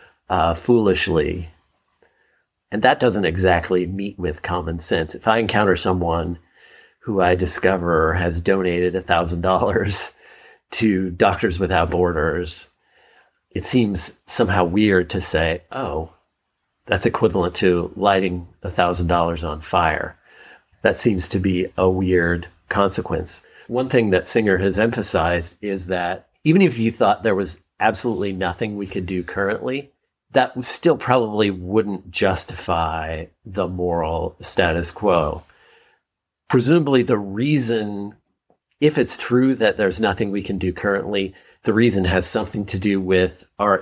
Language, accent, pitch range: English, American, 90-110 Hz